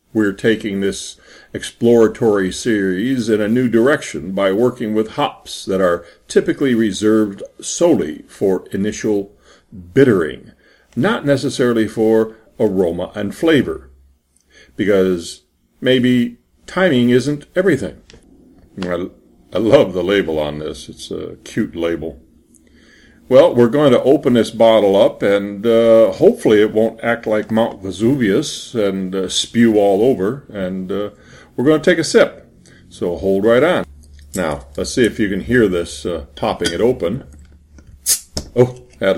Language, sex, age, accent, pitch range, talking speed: English, male, 50-69, American, 80-115 Hz, 140 wpm